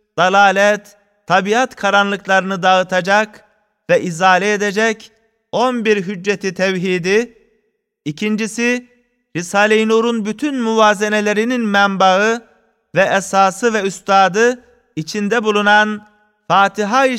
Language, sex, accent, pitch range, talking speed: Turkish, male, native, 190-215 Hz, 85 wpm